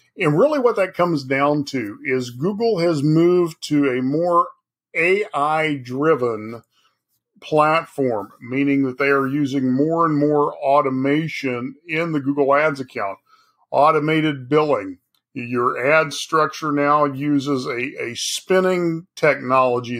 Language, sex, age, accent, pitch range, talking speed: English, male, 50-69, American, 135-175 Hz, 125 wpm